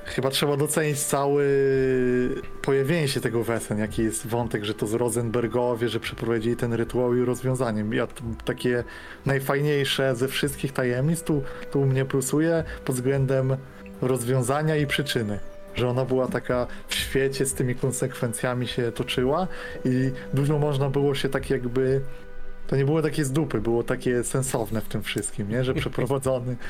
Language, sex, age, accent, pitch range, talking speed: Polish, male, 20-39, native, 125-140 Hz, 150 wpm